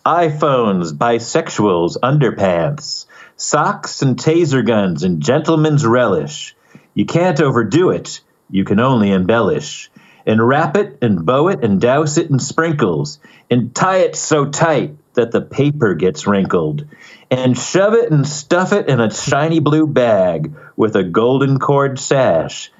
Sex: male